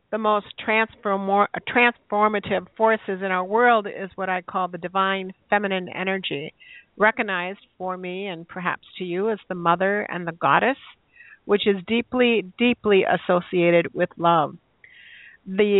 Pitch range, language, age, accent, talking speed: 185-225 Hz, English, 50-69, American, 135 wpm